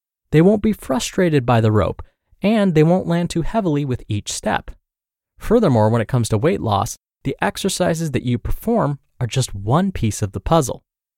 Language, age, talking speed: English, 20-39, 190 wpm